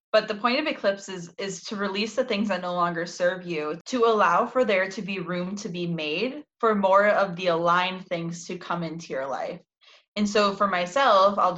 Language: English